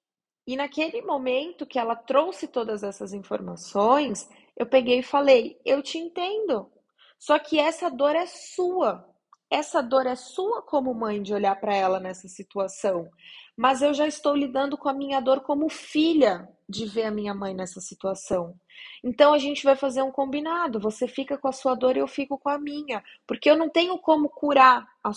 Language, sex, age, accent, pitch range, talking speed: Portuguese, female, 20-39, Brazilian, 215-285 Hz, 185 wpm